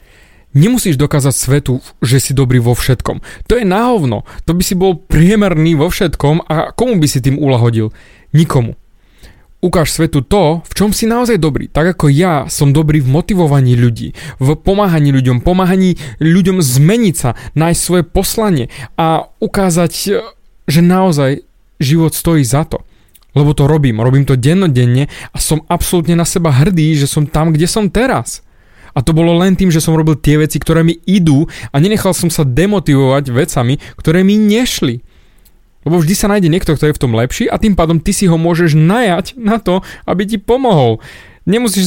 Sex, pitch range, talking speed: male, 140-190 Hz, 175 wpm